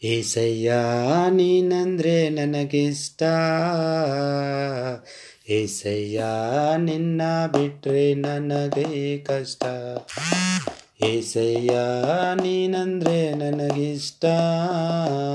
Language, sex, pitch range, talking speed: Kannada, male, 140-190 Hz, 45 wpm